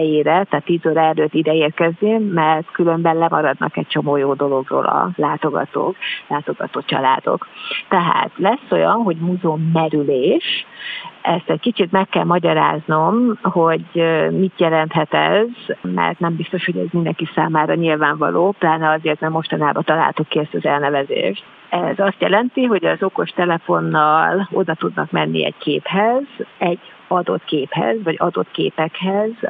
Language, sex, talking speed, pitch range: Hungarian, female, 140 wpm, 155-185 Hz